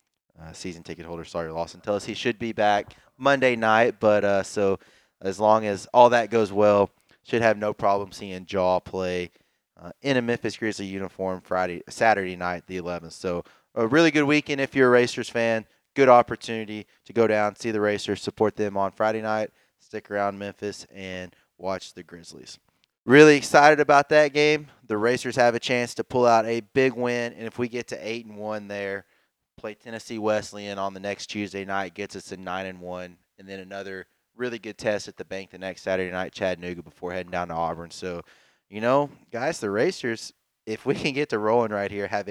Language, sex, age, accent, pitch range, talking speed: English, male, 20-39, American, 95-115 Hz, 205 wpm